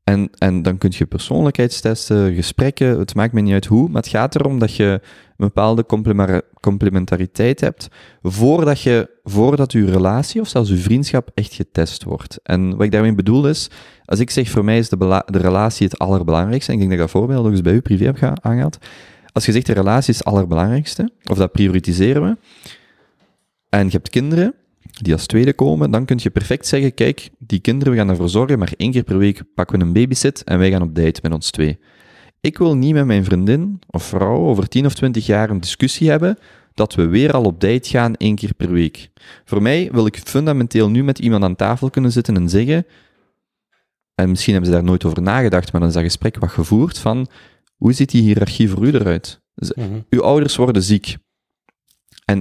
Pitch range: 95-130 Hz